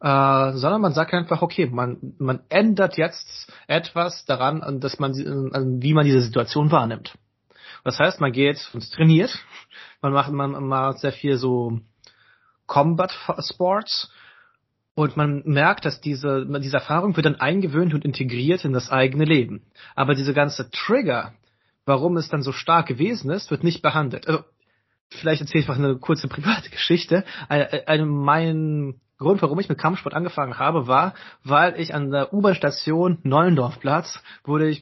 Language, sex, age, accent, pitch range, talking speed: German, male, 30-49, German, 135-165 Hz, 160 wpm